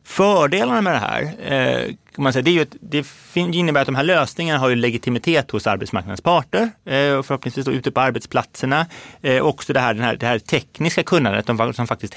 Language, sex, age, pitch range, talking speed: Swedish, male, 30-49, 110-145 Hz, 205 wpm